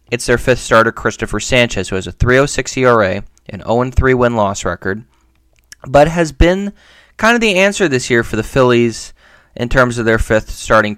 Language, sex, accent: English, male, American